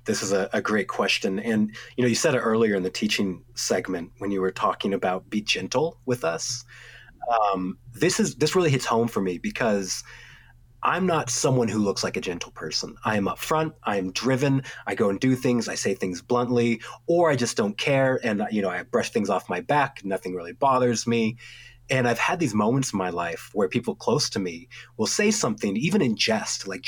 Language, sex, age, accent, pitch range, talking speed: English, male, 30-49, American, 115-145 Hz, 215 wpm